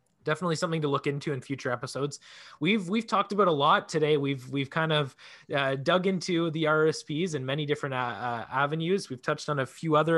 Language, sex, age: English, male, 20-39